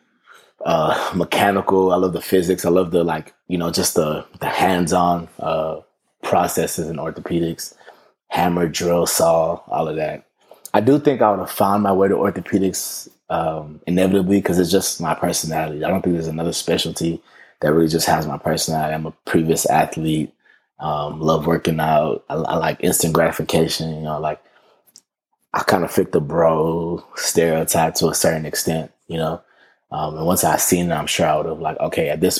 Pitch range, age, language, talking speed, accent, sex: 80-90 Hz, 20-39, English, 185 wpm, American, male